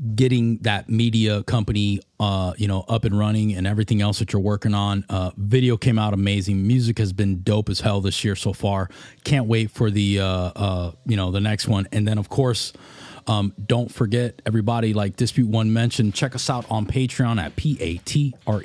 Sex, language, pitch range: male, English, 105-140 Hz